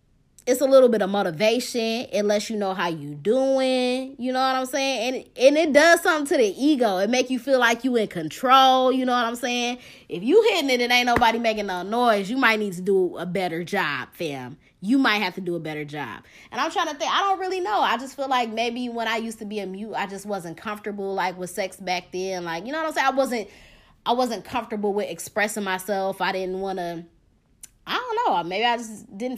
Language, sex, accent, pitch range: English, female, American, 190-255 Hz